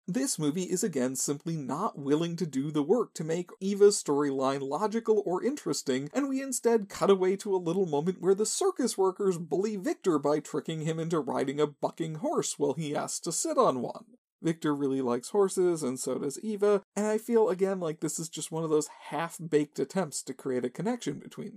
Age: 40-59